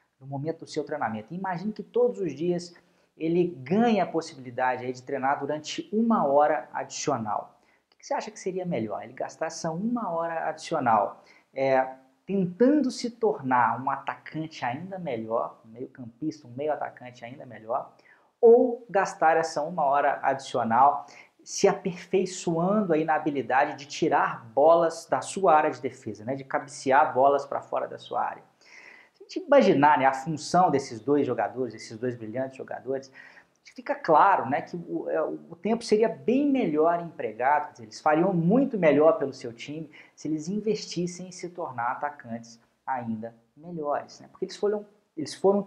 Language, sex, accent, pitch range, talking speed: Portuguese, male, Brazilian, 135-185 Hz, 160 wpm